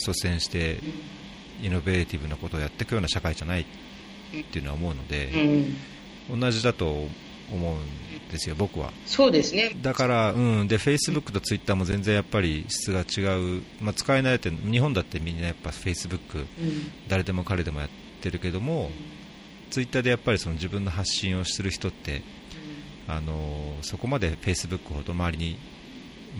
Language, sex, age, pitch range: Japanese, male, 40-59, 85-120 Hz